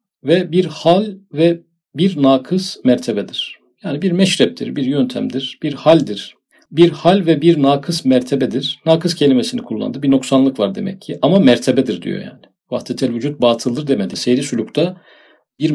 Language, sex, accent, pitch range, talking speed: Turkish, male, native, 135-185 Hz, 150 wpm